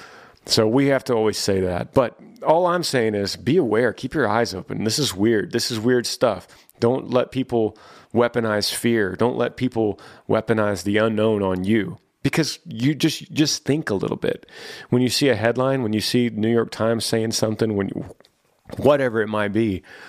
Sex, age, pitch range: male, 30-49, 95-115 Hz